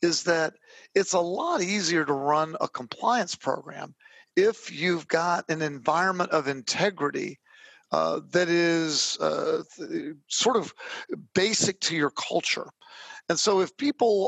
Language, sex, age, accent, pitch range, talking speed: English, male, 50-69, American, 160-215 Hz, 140 wpm